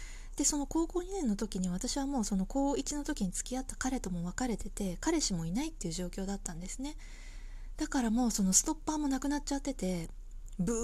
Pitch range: 185-290 Hz